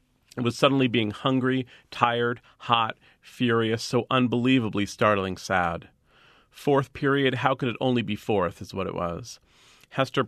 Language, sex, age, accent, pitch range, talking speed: English, male, 40-59, American, 105-125 Hz, 145 wpm